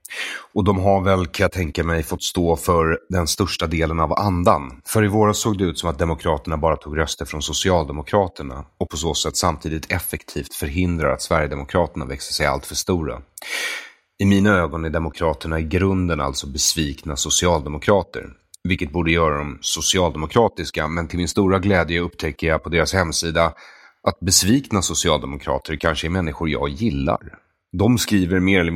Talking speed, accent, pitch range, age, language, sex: 165 wpm, Swedish, 80-95 Hz, 30-49, English, male